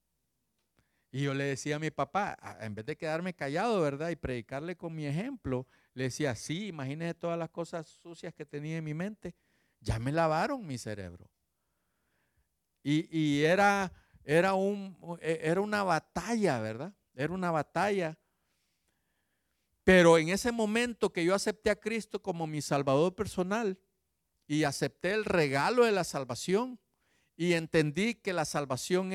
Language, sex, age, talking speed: Spanish, male, 50-69, 150 wpm